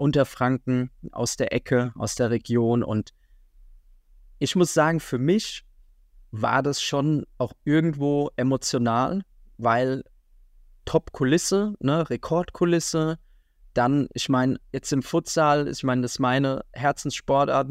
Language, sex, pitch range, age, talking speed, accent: German, male, 125-150 Hz, 20-39, 120 wpm, German